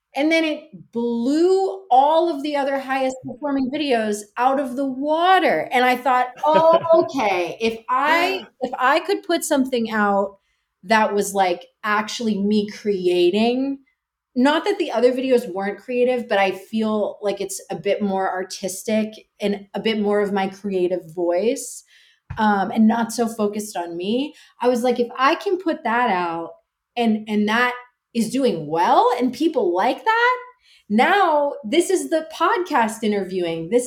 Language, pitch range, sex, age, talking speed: English, 200-275 Hz, female, 30-49, 160 wpm